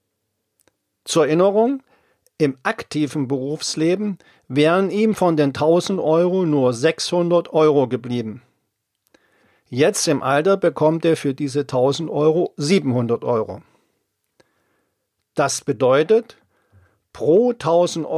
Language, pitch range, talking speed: German, 135-180 Hz, 100 wpm